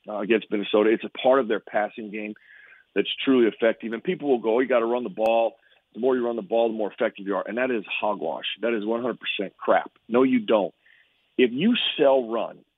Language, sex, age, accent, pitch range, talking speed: English, male, 40-59, American, 105-130 Hz, 230 wpm